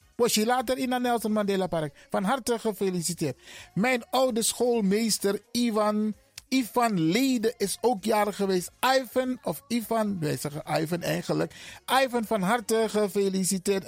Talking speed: 140 wpm